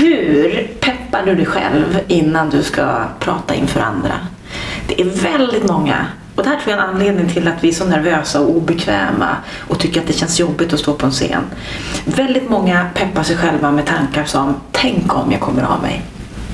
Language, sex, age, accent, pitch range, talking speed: Swedish, female, 30-49, native, 160-215 Hz, 205 wpm